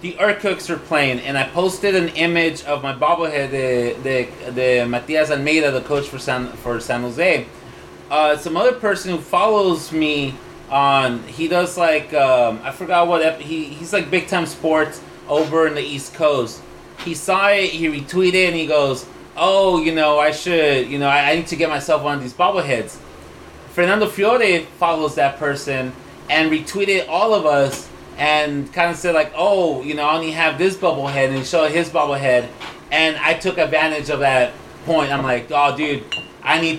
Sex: male